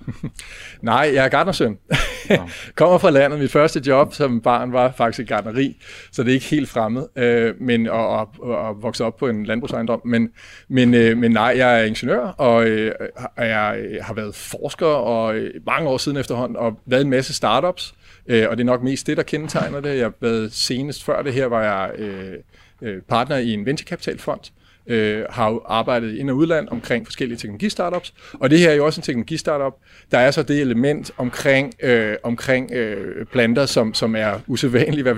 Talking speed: 190 wpm